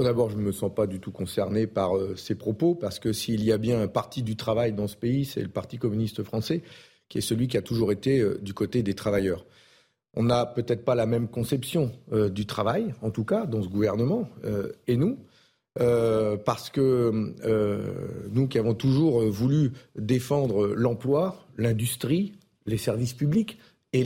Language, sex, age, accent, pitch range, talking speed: French, male, 40-59, French, 110-145 Hz, 195 wpm